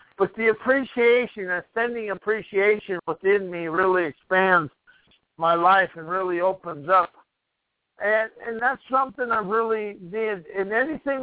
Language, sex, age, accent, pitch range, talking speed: English, male, 60-79, American, 175-220 Hz, 130 wpm